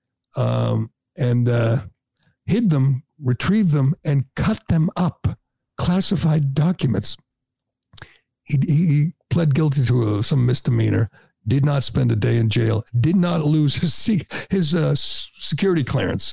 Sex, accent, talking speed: male, American, 130 wpm